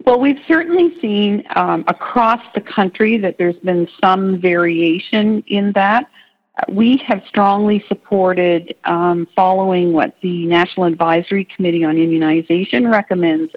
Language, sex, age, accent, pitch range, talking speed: English, female, 50-69, American, 170-225 Hz, 130 wpm